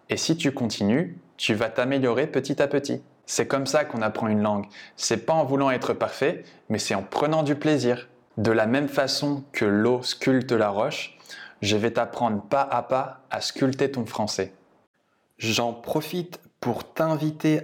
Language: French